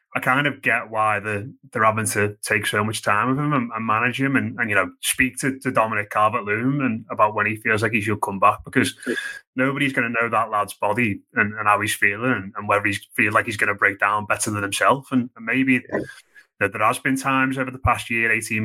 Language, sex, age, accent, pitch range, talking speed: English, male, 20-39, British, 105-130 Hz, 250 wpm